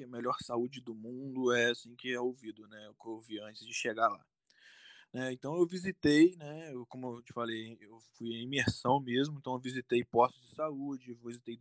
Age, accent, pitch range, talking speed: 20-39, Brazilian, 115-140 Hz, 205 wpm